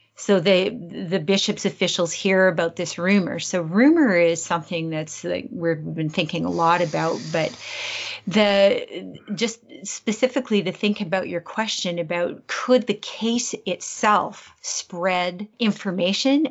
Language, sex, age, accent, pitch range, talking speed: English, female, 40-59, American, 175-210 Hz, 135 wpm